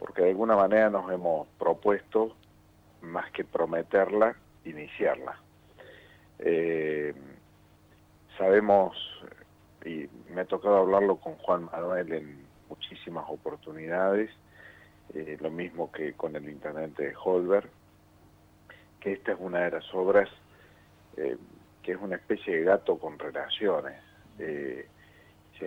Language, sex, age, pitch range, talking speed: Spanish, male, 50-69, 80-100 Hz, 120 wpm